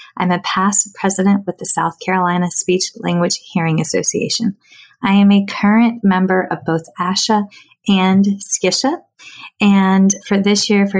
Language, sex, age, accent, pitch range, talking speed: English, female, 20-39, American, 175-205 Hz, 140 wpm